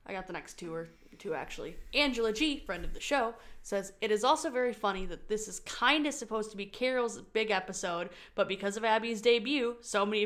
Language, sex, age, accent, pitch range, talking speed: English, female, 20-39, American, 185-235 Hz, 220 wpm